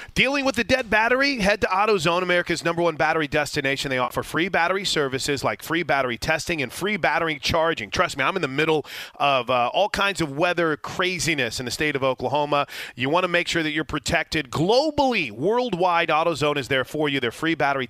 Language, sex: English, male